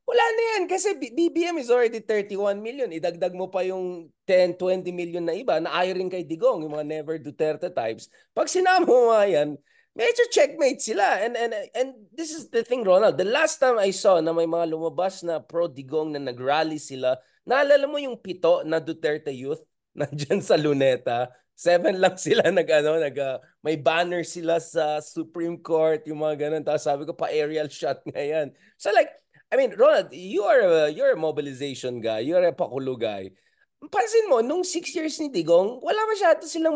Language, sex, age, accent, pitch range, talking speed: English, male, 20-39, Filipino, 155-235 Hz, 190 wpm